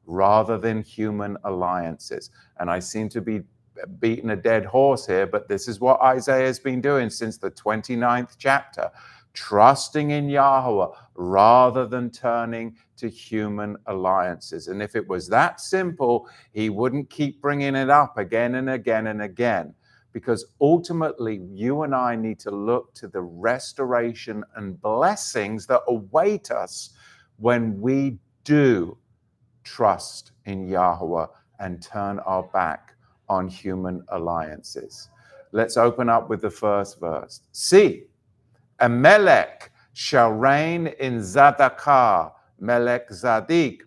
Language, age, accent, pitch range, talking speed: English, 50-69, British, 105-140 Hz, 135 wpm